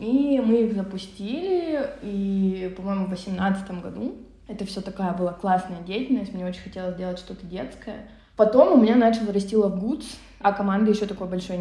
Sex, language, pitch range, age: female, Russian, 185-225 Hz, 20-39